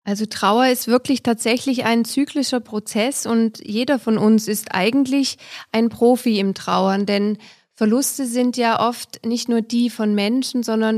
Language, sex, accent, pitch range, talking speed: German, female, German, 205-245 Hz, 160 wpm